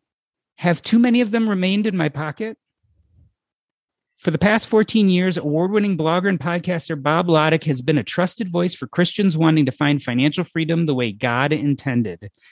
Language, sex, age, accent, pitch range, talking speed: English, male, 30-49, American, 150-200 Hz, 175 wpm